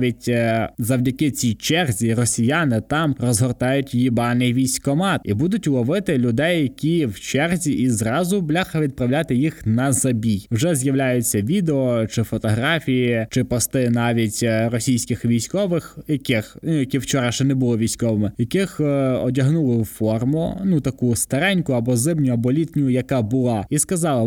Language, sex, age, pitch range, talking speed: Ukrainian, male, 20-39, 120-150 Hz, 135 wpm